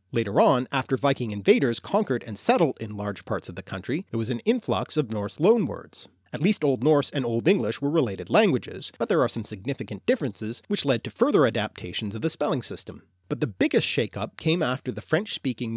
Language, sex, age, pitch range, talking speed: English, male, 40-59, 110-150 Hz, 205 wpm